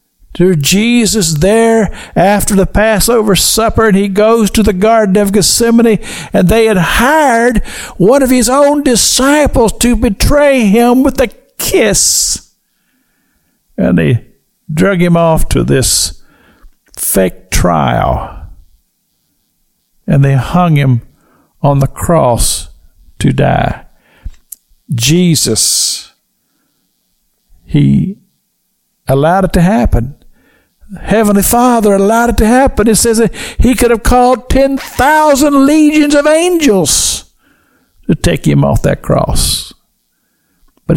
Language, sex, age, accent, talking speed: English, male, 50-69, American, 115 wpm